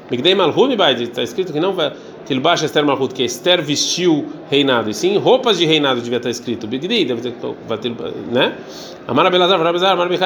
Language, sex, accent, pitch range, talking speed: Portuguese, male, Brazilian, 145-185 Hz, 150 wpm